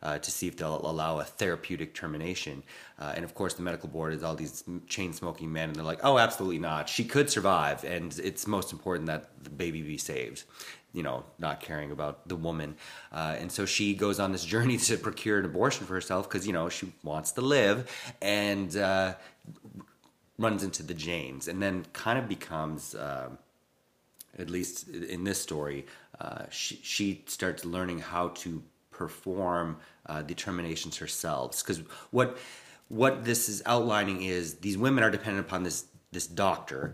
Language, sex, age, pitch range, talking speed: English, male, 30-49, 80-100 Hz, 180 wpm